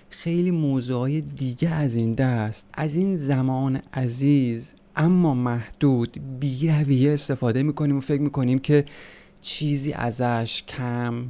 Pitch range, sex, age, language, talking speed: 120-155 Hz, male, 30-49, Persian, 135 wpm